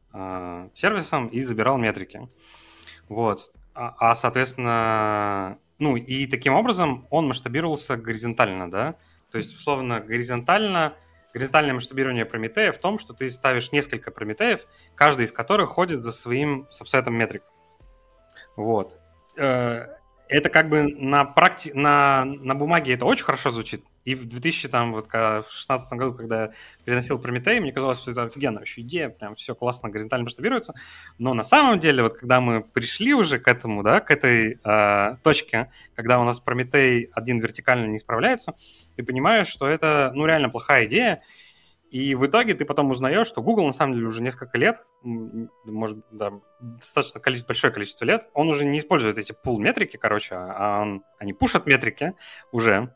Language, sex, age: Russian, male, 30-49